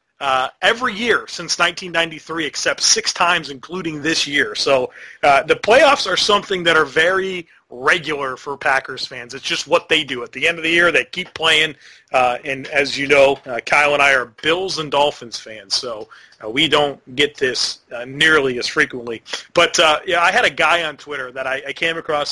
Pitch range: 140-180 Hz